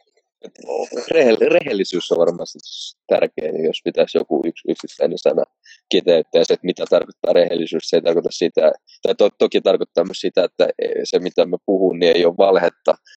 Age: 20-39